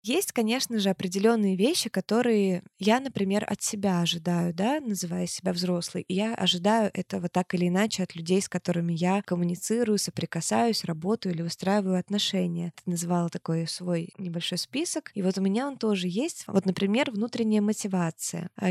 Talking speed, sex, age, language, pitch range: 155 wpm, female, 20-39, Russian, 175-215 Hz